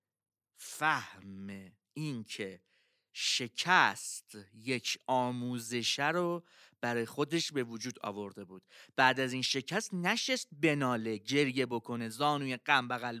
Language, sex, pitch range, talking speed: Persian, male, 135-215 Hz, 100 wpm